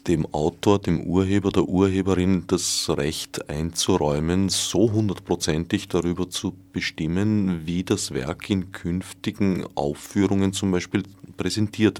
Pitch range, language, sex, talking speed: 85-100 Hz, German, male, 115 wpm